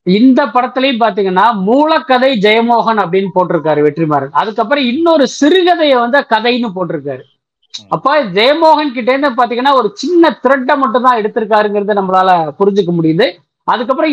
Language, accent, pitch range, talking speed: Tamil, native, 195-260 Hz, 100 wpm